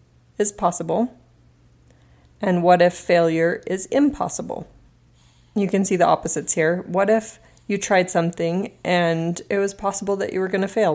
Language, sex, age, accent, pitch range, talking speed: English, female, 30-49, American, 160-190 Hz, 160 wpm